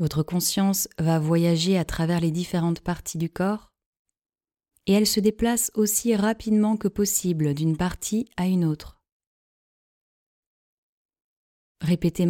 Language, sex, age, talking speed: French, female, 20-39, 120 wpm